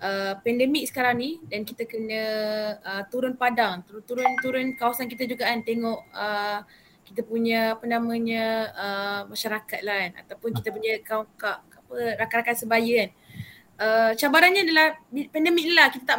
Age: 20-39